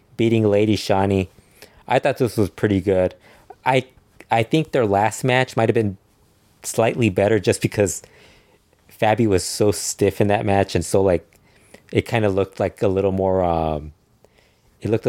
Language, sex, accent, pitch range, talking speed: English, male, American, 90-110 Hz, 170 wpm